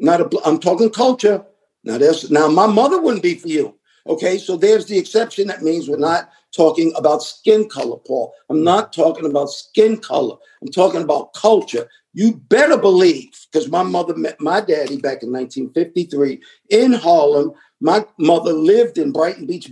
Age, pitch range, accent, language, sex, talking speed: 50-69, 145-210 Hz, American, English, male, 175 wpm